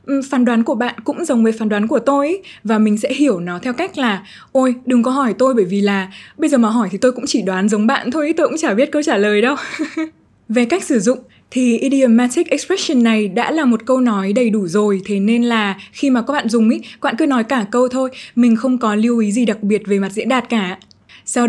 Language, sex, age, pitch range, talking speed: Vietnamese, female, 20-39, 215-275 Hz, 265 wpm